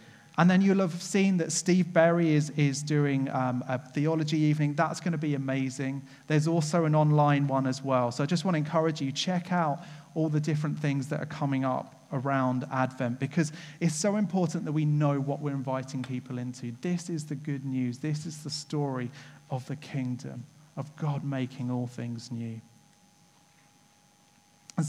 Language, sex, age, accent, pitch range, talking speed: English, male, 30-49, British, 135-170 Hz, 185 wpm